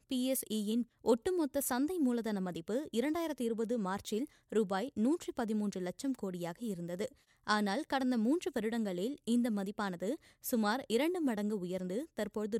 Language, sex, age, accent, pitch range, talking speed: Tamil, female, 20-39, native, 210-275 Hz, 120 wpm